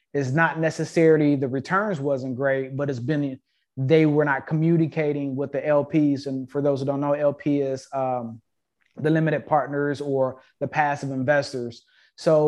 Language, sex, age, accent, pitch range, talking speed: English, male, 30-49, American, 140-165 Hz, 165 wpm